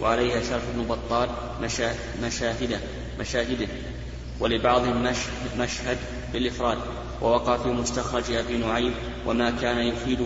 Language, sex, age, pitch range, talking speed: Arabic, male, 30-49, 120-125 Hz, 110 wpm